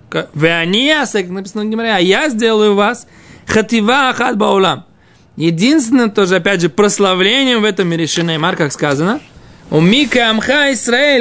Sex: male